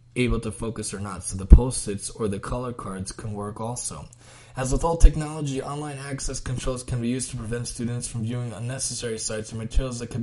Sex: male